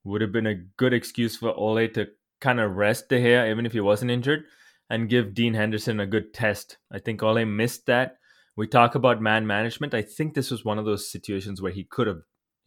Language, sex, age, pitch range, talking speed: English, male, 20-39, 100-120 Hz, 225 wpm